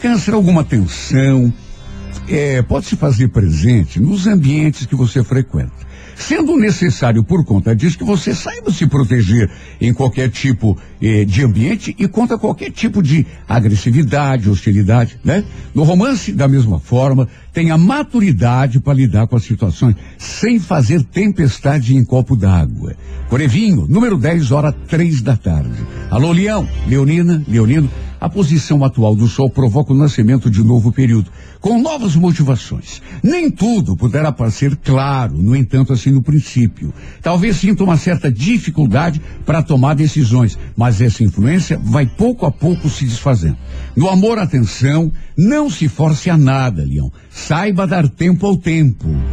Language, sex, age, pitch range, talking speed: Portuguese, male, 60-79, 115-170 Hz, 145 wpm